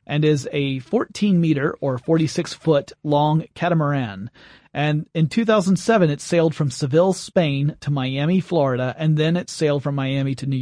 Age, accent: 40-59, American